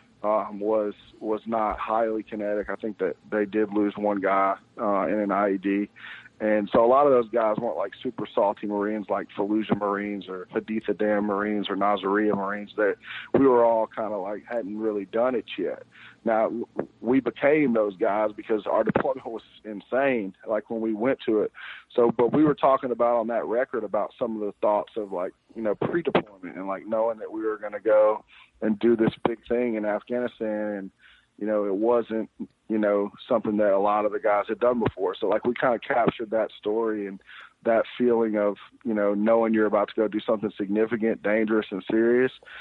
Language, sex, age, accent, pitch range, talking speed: English, male, 40-59, American, 105-115 Hz, 205 wpm